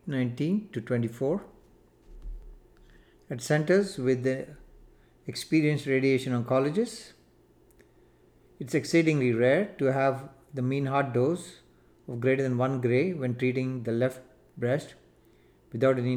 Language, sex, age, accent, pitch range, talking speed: English, male, 50-69, Indian, 125-140 Hz, 115 wpm